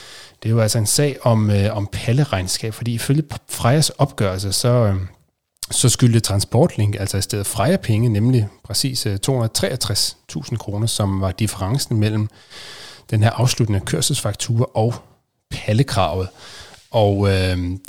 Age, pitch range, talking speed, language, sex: 30-49, 100-130 Hz, 125 wpm, Danish, male